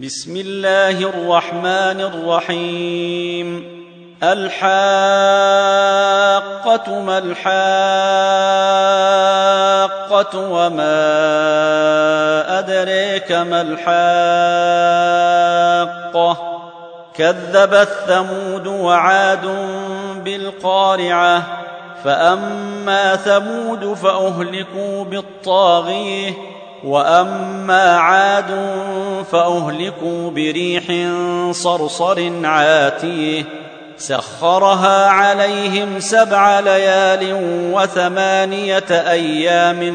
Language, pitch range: Arabic, 170-195 Hz